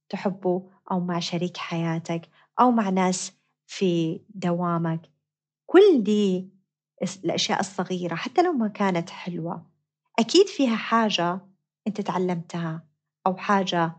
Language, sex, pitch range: Arabic, female, 170-210 Hz